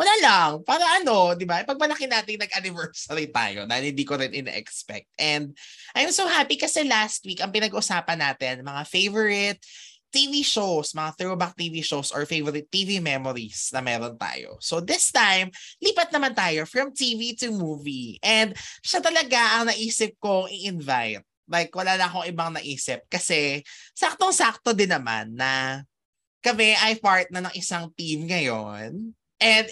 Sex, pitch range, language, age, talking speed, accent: male, 150-225 Hz, Filipino, 20-39, 160 wpm, native